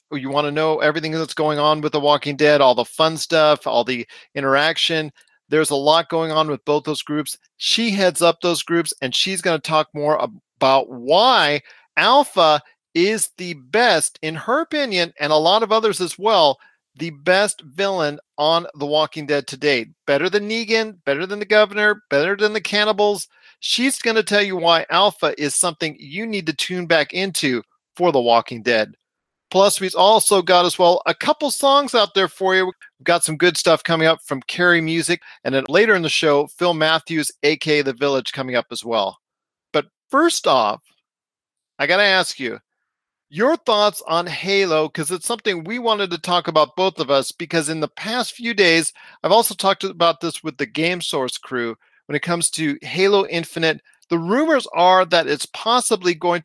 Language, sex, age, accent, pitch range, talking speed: English, male, 40-59, American, 150-195 Hz, 195 wpm